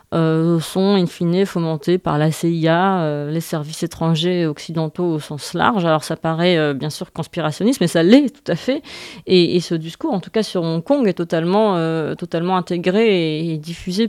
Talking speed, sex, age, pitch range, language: 200 wpm, female, 30-49, 160-190 Hz, French